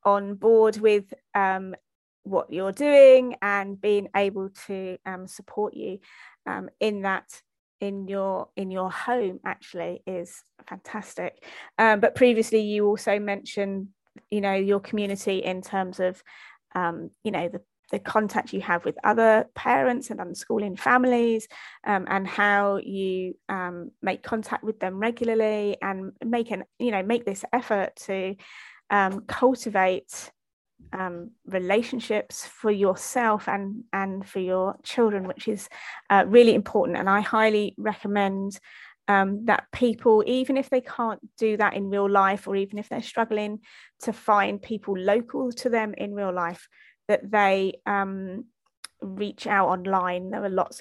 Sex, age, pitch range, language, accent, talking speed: female, 20-39, 195-225 Hz, English, British, 150 wpm